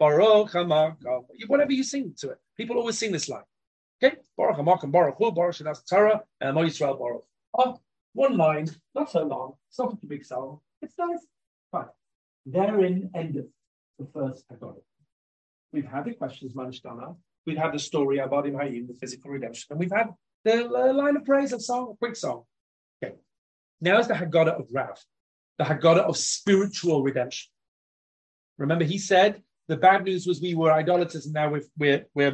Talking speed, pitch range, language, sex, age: 155 wpm, 145-215 Hz, English, male, 30-49